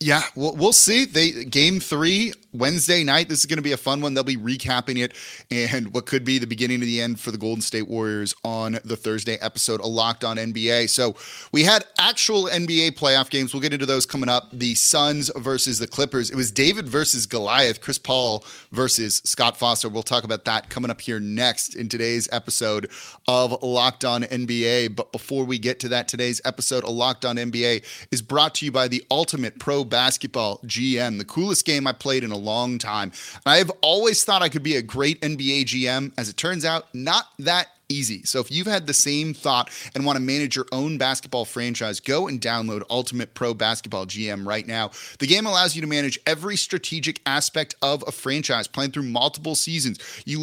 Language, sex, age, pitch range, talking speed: English, male, 30-49, 120-150 Hz, 205 wpm